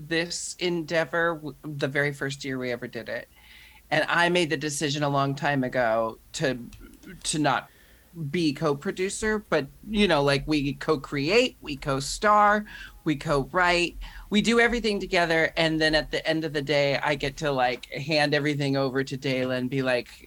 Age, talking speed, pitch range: 30-49, 170 wpm, 140-190 Hz